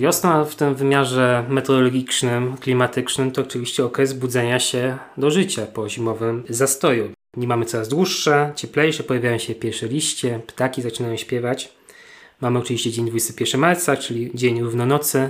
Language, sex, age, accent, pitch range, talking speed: Polish, male, 20-39, native, 115-135 Hz, 140 wpm